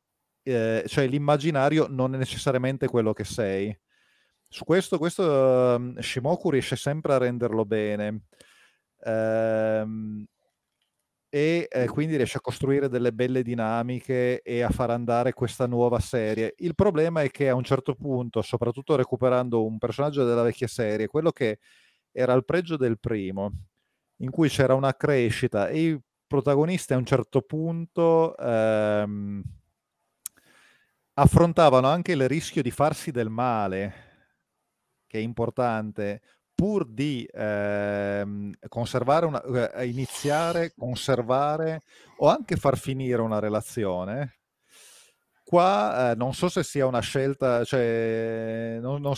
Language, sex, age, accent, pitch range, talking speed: Italian, male, 30-49, native, 115-140 Hz, 125 wpm